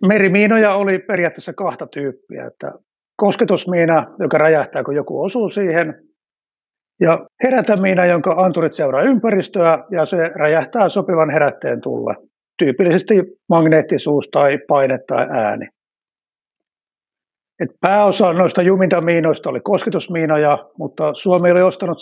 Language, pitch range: Finnish, 150-190 Hz